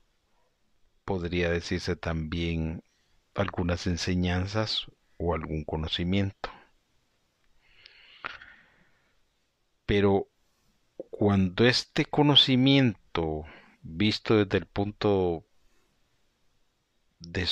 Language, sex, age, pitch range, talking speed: Spanish, male, 50-69, 85-100 Hz, 60 wpm